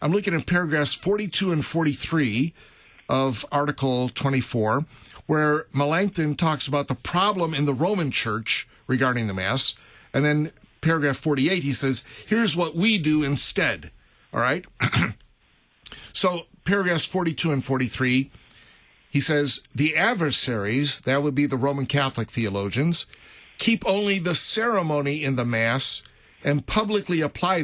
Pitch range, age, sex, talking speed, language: 125-170 Hz, 50-69, male, 135 wpm, English